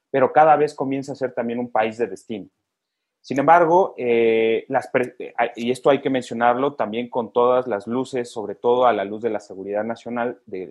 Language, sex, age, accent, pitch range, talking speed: Spanish, male, 30-49, Mexican, 115-140 Hz, 200 wpm